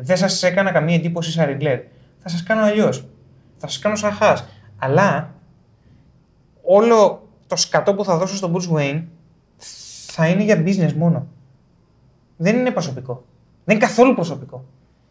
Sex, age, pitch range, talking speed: male, 30-49, 135-210 Hz, 145 wpm